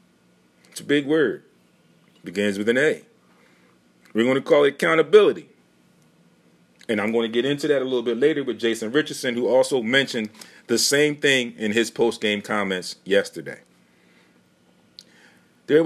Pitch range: 95-150 Hz